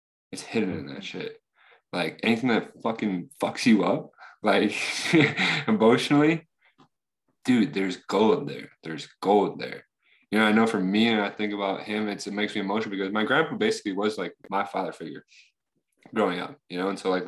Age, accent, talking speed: 20-39, American, 180 wpm